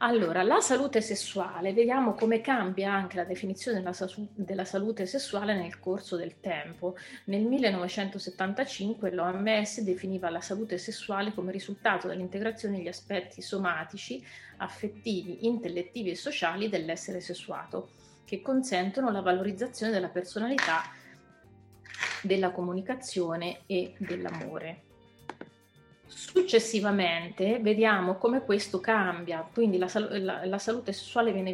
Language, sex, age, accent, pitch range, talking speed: Italian, female, 30-49, native, 180-220 Hz, 110 wpm